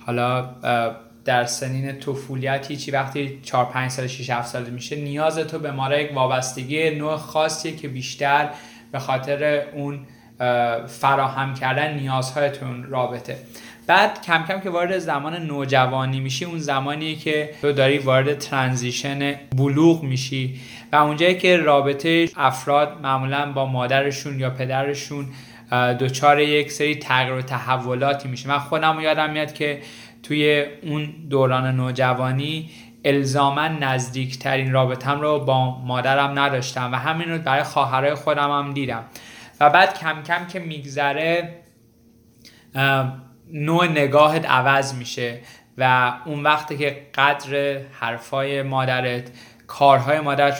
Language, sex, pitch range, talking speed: Persian, male, 130-150 Hz, 125 wpm